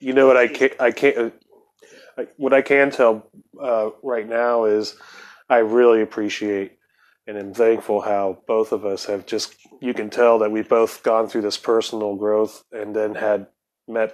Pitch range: 110-125 Hz